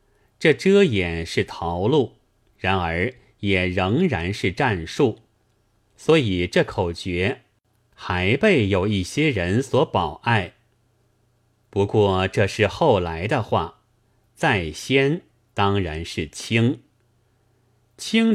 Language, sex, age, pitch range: Chinese, male, 30-49, 95-125 Hz